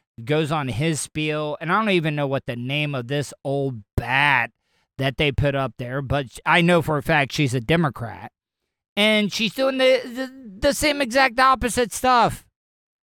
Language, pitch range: English, 140-195 Hz